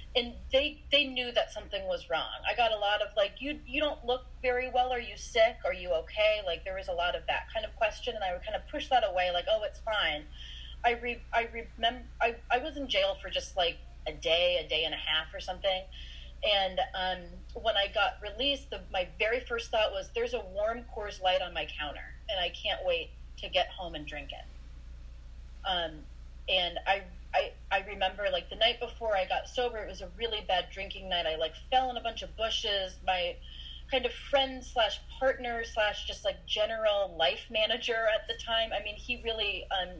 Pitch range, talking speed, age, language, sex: 170-245 Hz, 220 wpm, 30-49, English, female